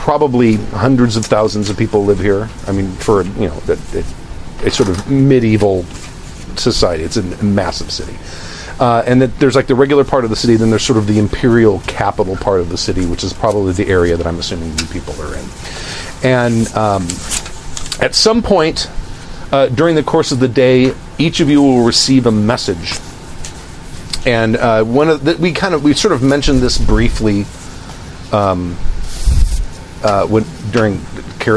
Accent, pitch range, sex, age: American, 90-120 Hz, male, 40-59